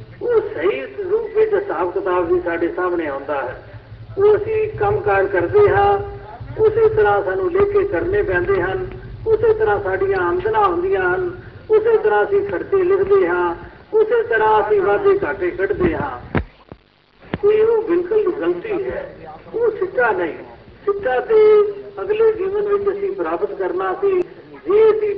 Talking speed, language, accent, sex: 125 wpm, Hindi, native, male